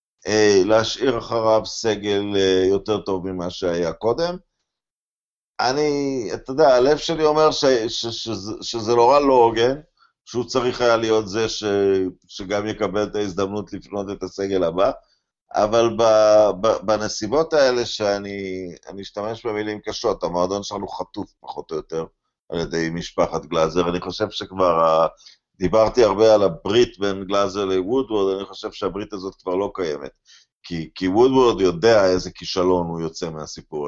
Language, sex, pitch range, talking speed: Hebrew, male, 90-110 Hz, 140 wpm